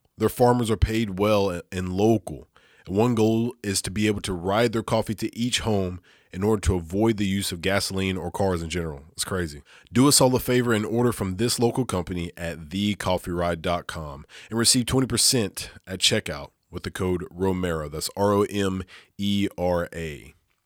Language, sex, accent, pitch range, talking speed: English, male, American, 90-110 Hz, 170 wpm